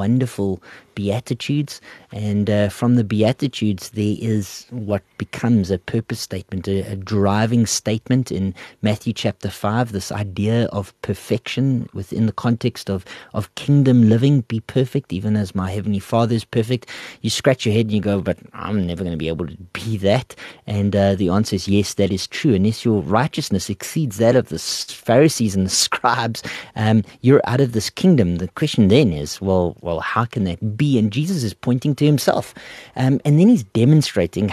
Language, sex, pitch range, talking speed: English, male, 100-125 Hz, 180 wpm